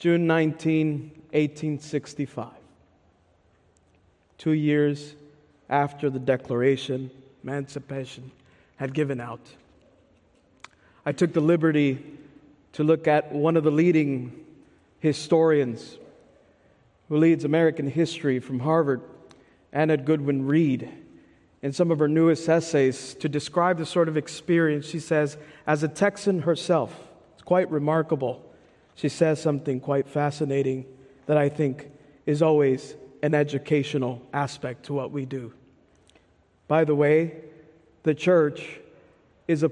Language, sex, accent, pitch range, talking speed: English, male, American, 135-155 Hz, 115 wpm